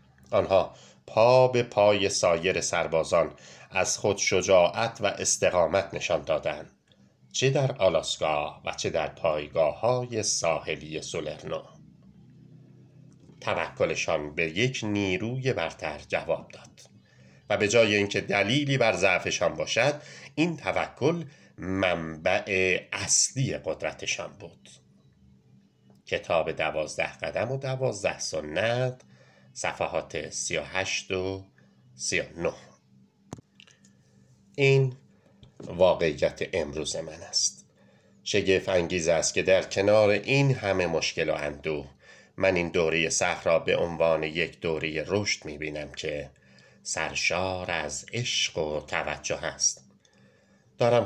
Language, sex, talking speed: English, male, 105 wpm